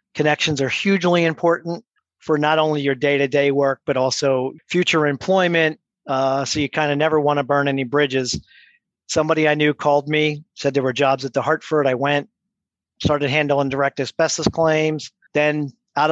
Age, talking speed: 50-69, 170 wpm